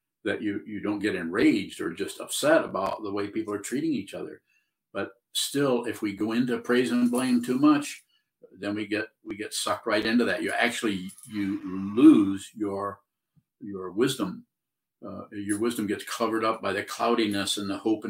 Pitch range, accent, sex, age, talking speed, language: 100-125 Hz, American, male, 50-69, 185 wpm, English